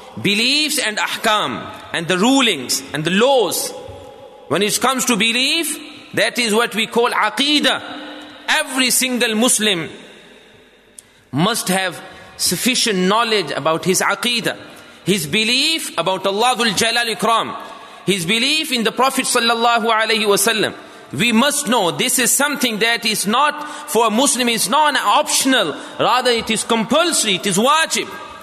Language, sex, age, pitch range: English, male, 30-49, 210-265 Hz